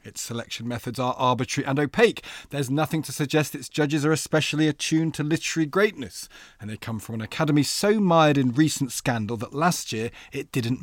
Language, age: English, 40-59